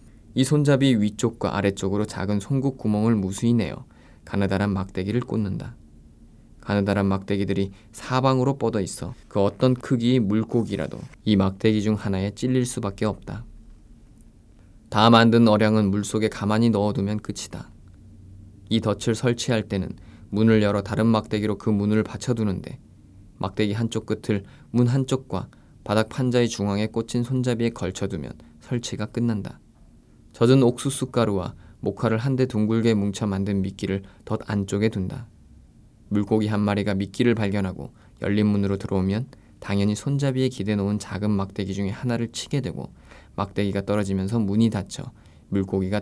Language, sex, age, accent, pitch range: Korean, male, 20-39, native, 100-115 Hz